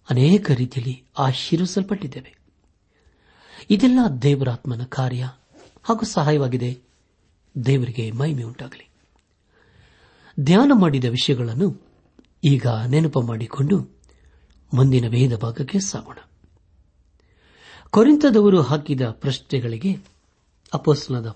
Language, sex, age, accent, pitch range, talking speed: Kannada, male, 60-79, native, 115-165 Hz, 70 wpm